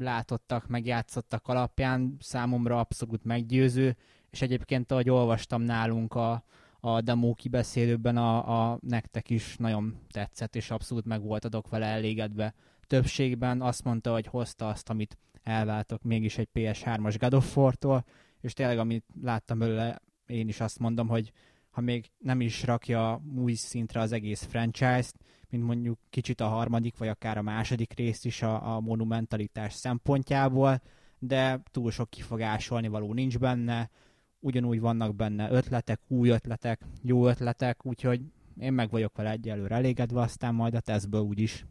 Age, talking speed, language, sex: 20-39, 145 wpm, Hungarian, male